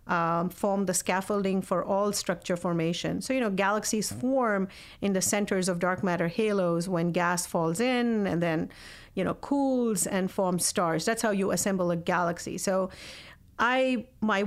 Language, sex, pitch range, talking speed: English, female, 185-235 Hz, 170 wpm